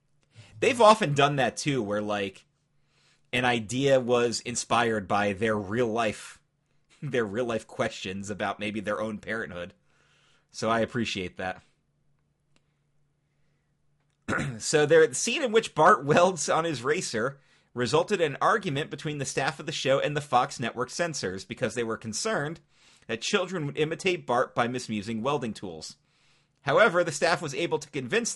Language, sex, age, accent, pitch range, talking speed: English, male, 30-49, American, 120-155 Hz, 155 wpm